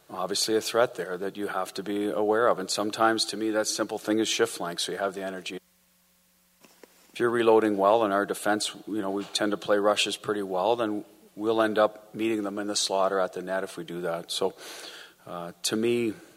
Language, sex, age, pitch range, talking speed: English, male, 40-59, 90-105 Hz, 225 wpm